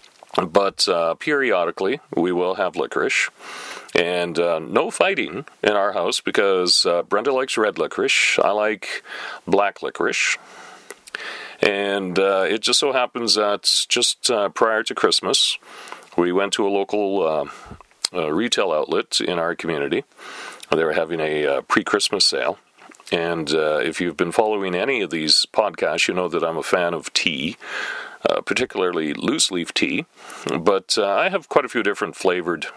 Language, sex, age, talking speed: English, male, 40-59, 155 wpm